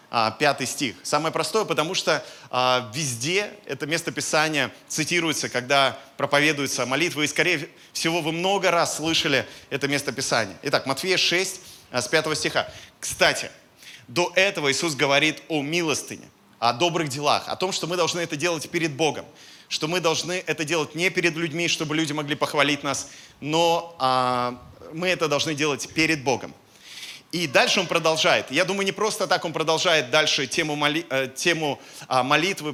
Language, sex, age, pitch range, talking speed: Russian, male, 20-39, 140-170 Hz, 160 wpm